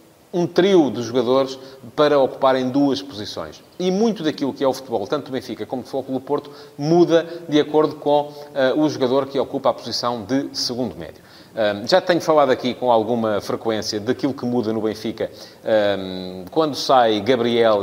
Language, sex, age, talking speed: Portuguese, male, 30-49, 180 wpm